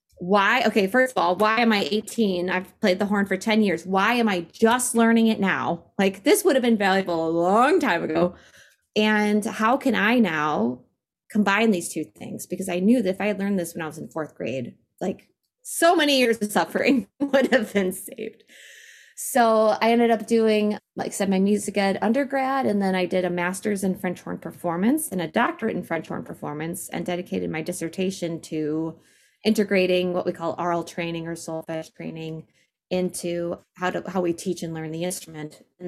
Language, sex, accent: English, female, American